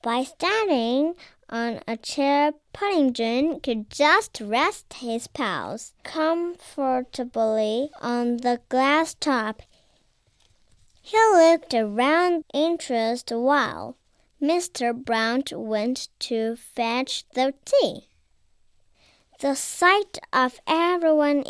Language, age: Chinese, 10-29